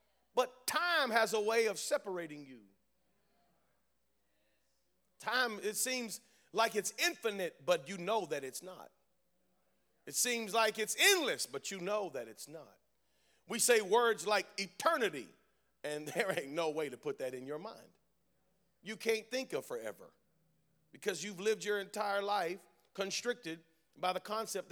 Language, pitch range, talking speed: English, 180-235 Hz, 150 wpm